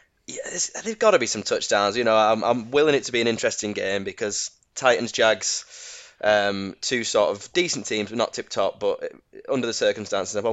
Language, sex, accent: English, male, British